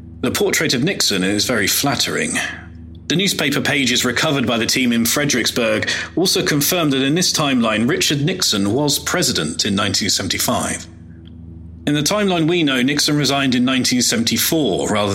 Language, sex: English, male